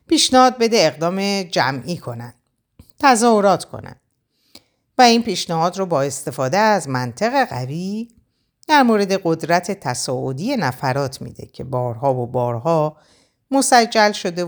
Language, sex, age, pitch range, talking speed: Persian, female, 50-69, 125-190 Hz, 115 wpm